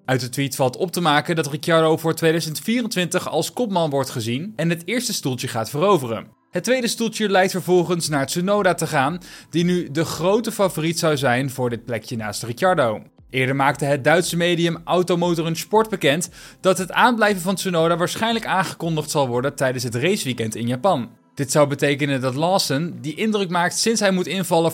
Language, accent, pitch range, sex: Dutch, Dutch, 145-190 Hz, male